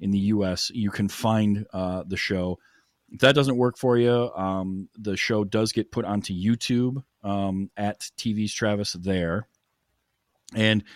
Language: English